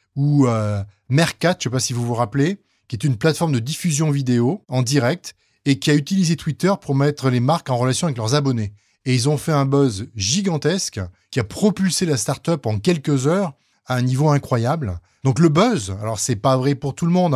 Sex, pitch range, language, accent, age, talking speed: male, 120-160 Hz, French, French, 20-39, 220 wpm